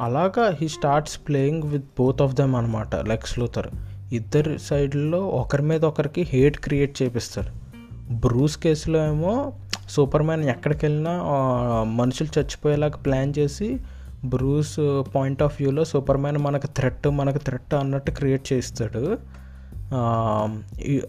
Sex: male